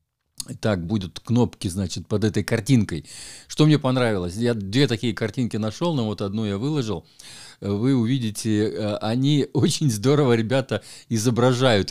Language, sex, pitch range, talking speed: Russian, male, 100-130 Hz, 135 wpm